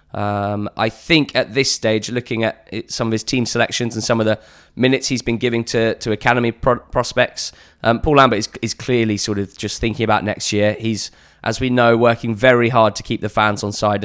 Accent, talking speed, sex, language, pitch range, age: British, 220 wpm, male, English, 105-120 Hz, 20-39